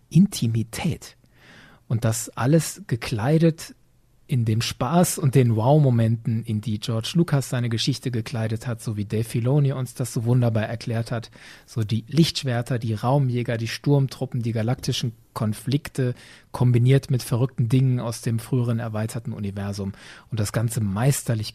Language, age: German, 40-59